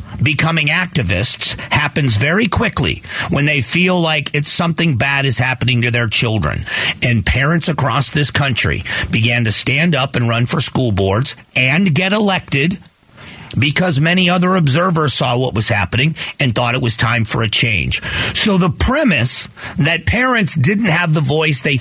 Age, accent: 50-69, American